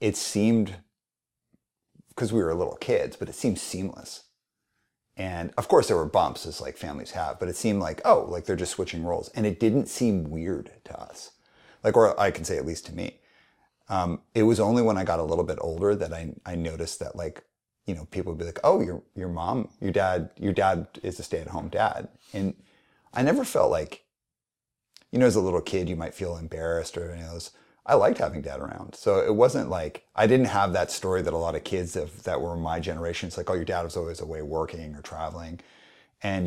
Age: 30-49